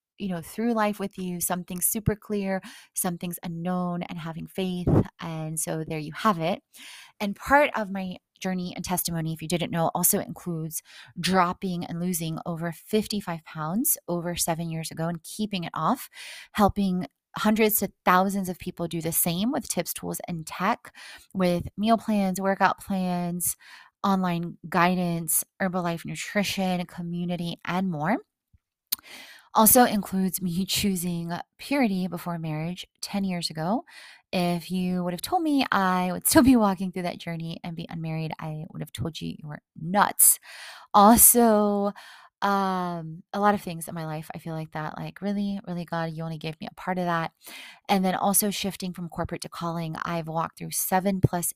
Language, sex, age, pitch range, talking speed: English, female, 20-39, 170-195 Hz, 170 wpm